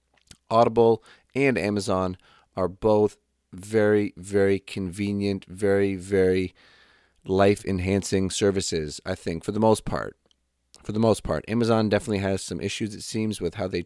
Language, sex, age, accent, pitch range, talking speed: English, male, 30-49, American, 90-110 Hz, 145 wpm